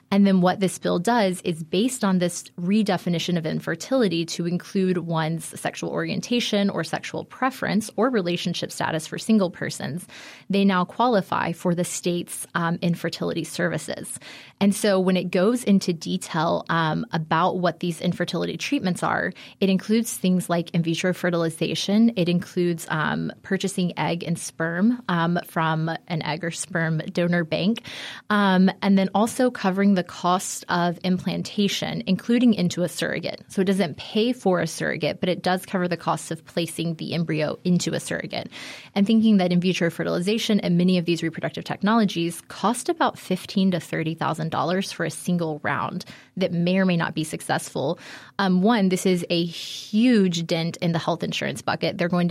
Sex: female